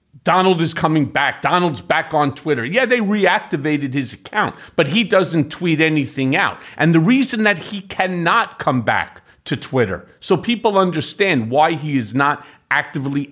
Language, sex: English, male